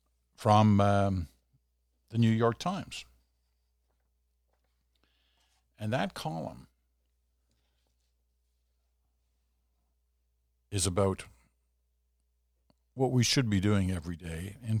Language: English